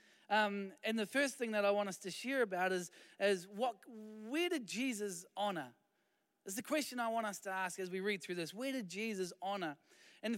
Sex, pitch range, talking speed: male, 175-235 Hz, 215 wpm